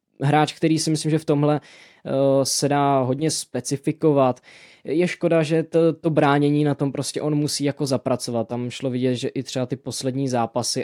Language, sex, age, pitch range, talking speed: Slovak, male, 20-39, 120-140 Hz, 190 wpm